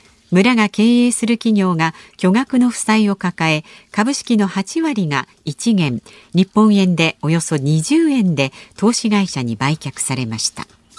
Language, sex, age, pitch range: Japanese, female, 50-69, 160-235 Hz